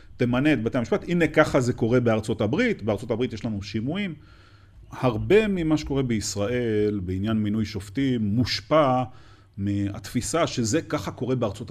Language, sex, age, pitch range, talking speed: Hebrew, male, 40-59, 100-135 Hz, 145 wpm